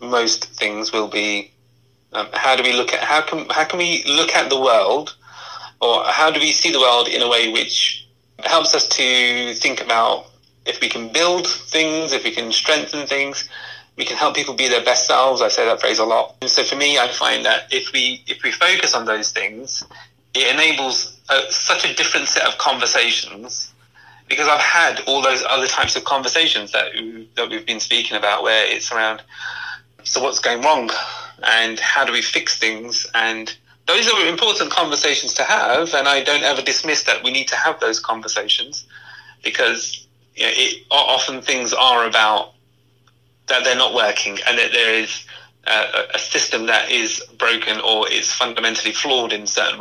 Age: 30-49